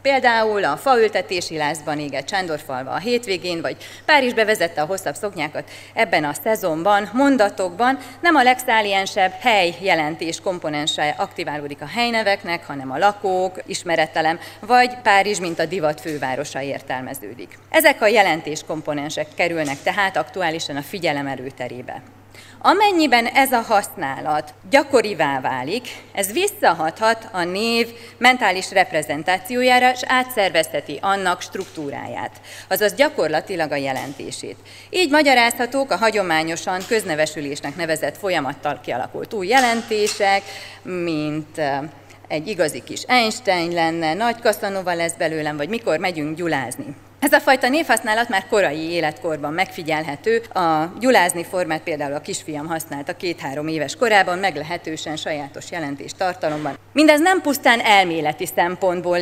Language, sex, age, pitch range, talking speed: Hungarian, female, 30-49, 155-230 Hz, 120 wpm